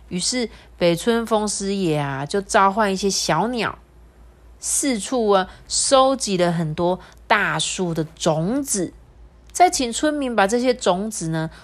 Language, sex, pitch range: Chinese, female, 160-205 Hz